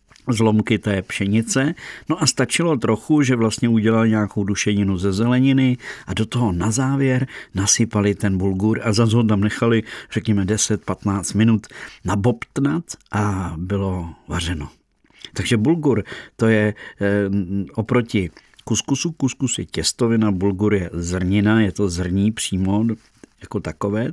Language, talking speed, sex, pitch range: Czech, 125 wpm, male, 95-115 Hz